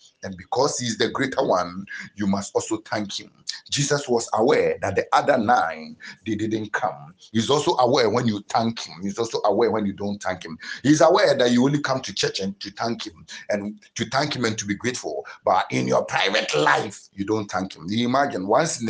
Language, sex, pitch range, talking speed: English, male, 105-145 Hz, 220 wpm